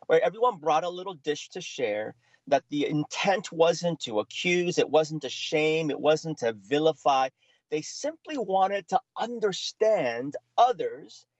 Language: English